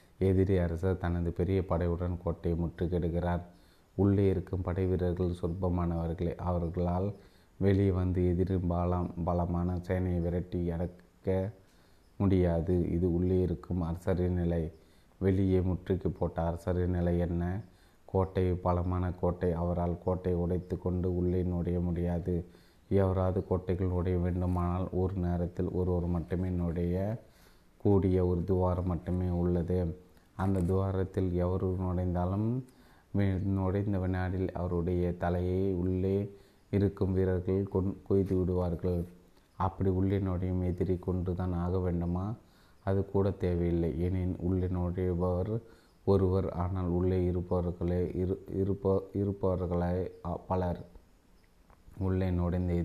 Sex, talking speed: male, 95 wpm